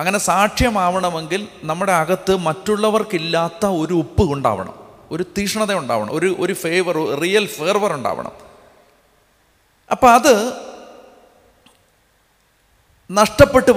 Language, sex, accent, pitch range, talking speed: Malayalam, male, native, 160-200 Hz, 85 wpm